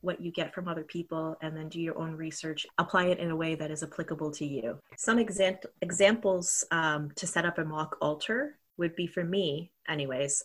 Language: English